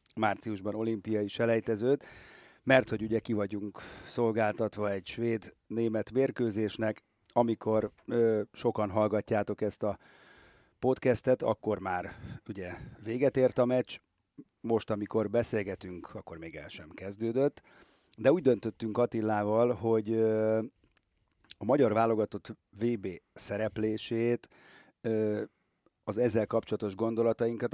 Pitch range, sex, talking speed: 105-115 Hz, male, 100 wpm